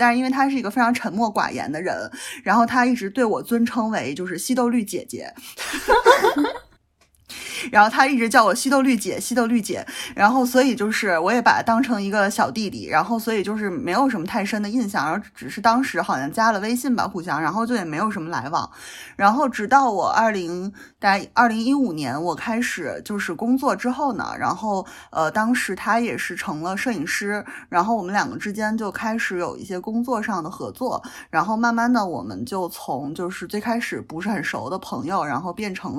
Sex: female